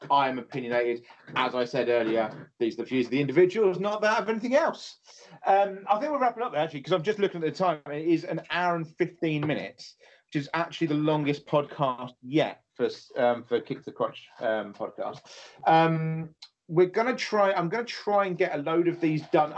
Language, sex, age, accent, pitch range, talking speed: English, male, 30-49, British, 140-175 Hz, 220 wpm